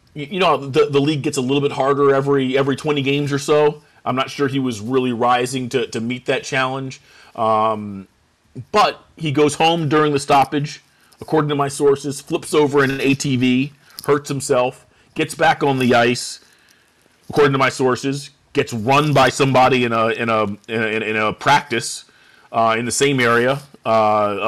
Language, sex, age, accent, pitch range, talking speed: English, male, 30-49, American, 115-145 Hz, 185 wpm